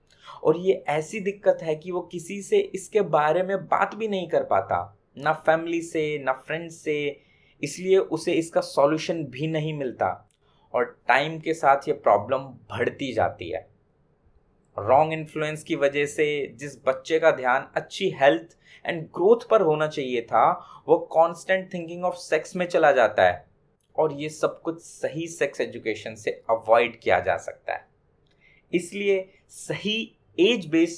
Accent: native